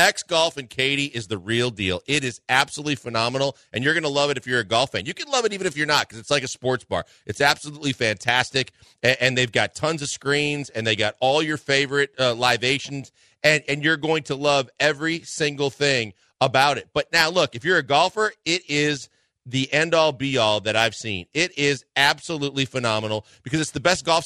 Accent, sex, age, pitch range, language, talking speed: American, male, 40-59, 125-155 Hz, English, 220 wpm